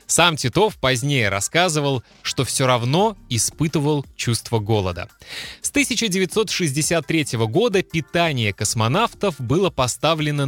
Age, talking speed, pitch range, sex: 20-39, 95 wpm, 120-170 Hz, male